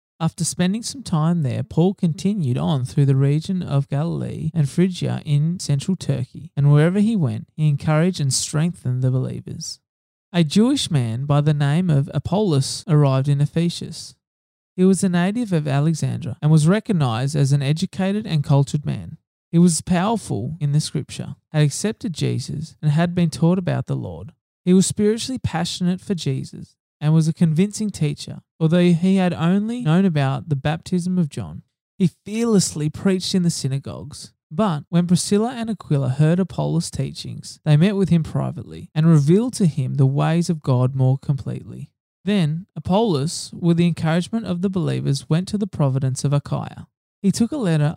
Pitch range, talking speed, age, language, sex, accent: 145-180 Hz, 175 wpm, 20-39, English, male, Australian